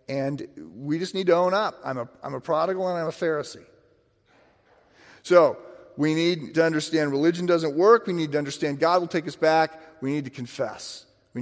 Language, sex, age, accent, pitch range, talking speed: English, male, 40-59, American, 120-170 Hz, 195 wpm